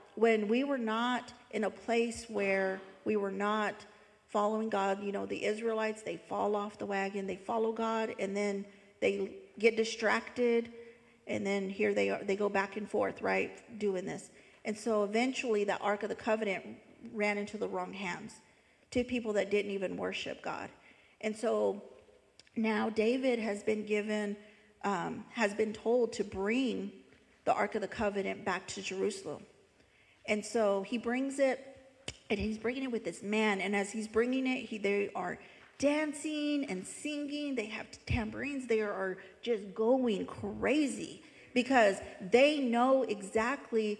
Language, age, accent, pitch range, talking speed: English, 40-59, American, 205-245 Hz, 160 wpm